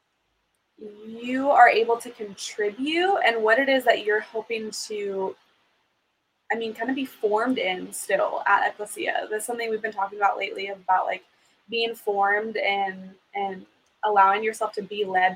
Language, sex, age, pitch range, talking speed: English, female, 20-39, 200-235 Hz, 160 wpm